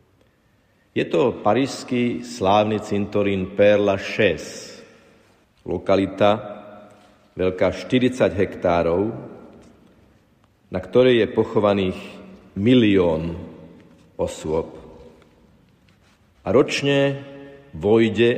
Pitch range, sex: 90-105 Hz, male